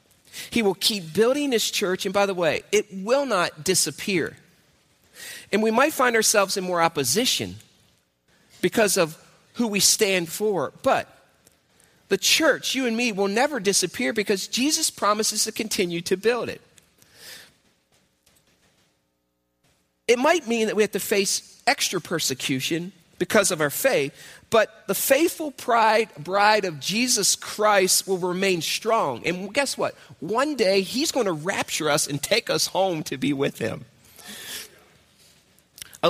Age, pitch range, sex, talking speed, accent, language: 40-59, 140-215 Hz, male, 145 wpm, American, English